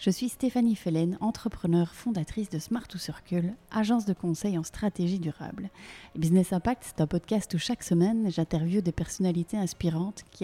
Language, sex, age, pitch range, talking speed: French, female, 30-49, 165-200 Hz, 170 wpm